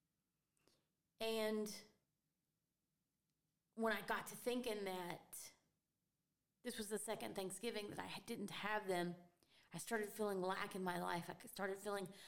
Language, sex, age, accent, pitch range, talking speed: English, female, 30-49, American, 185-225 Hz, 130 wpm